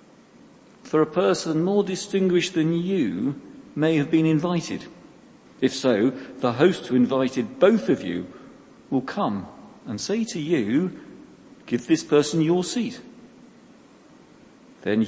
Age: 50-69